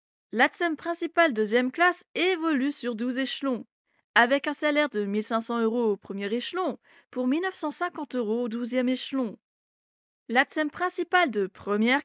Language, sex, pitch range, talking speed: French, female, 235-315 Hz, 150 wpm